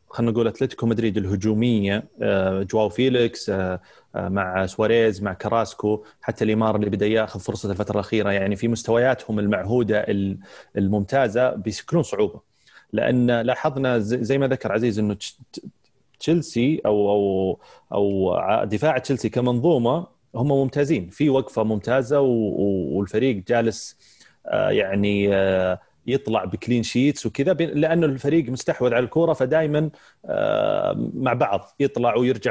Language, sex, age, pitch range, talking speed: Arabic, male, 30-49, 105-135 Hz, 115 wpm